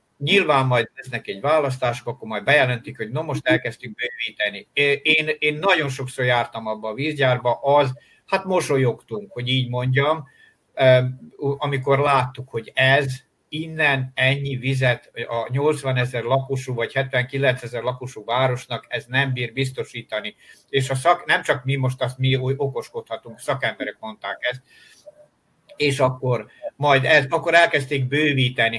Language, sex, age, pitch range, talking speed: Hungarian, male, 60-79, 120-145 Hz, 140 wpm